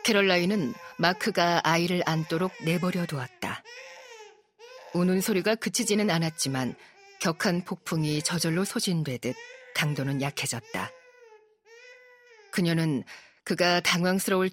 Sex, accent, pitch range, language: female, native, 150-195 Hz, Korean